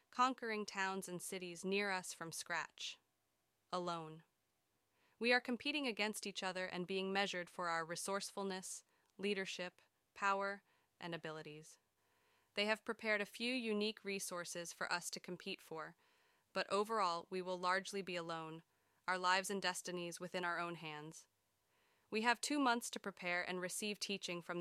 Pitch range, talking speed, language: 170-200 Hz, 150 wpm, English